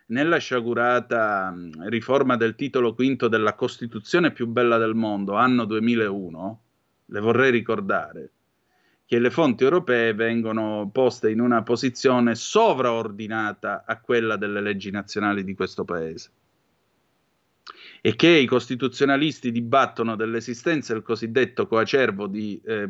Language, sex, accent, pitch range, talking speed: Italian, male, native, 110-130 Hz, 125 wpm